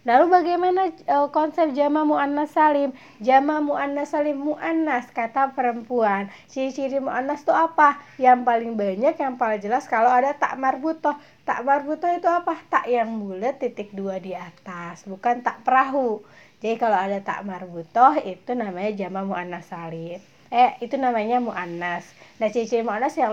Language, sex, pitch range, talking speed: Arabic, female, 195-280 Hz, 150 wpm